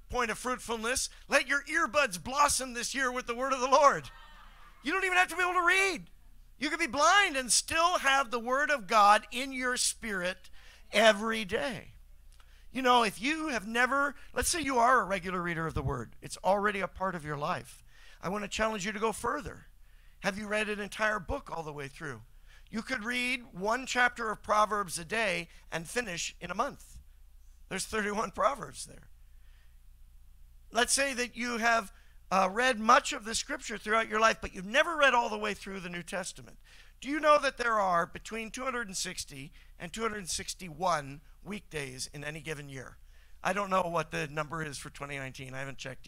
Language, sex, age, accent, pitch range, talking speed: English, male, 50-69, American, 160-245 Hz, 195 wpm